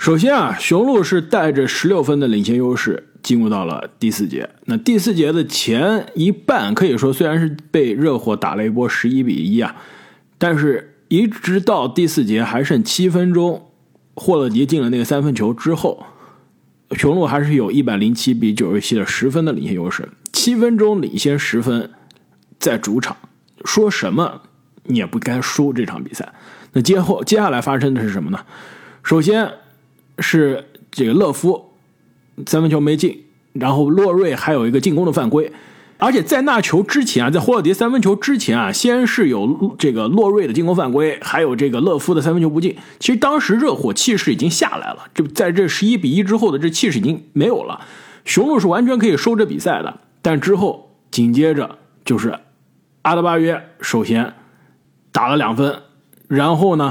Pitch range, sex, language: 140-210 Hz, male, Chinese